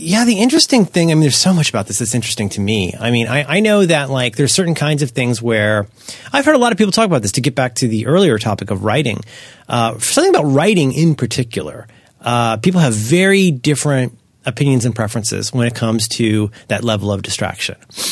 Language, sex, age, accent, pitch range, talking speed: English, male, 30-49, American, 110-150 Hz, 225 wpm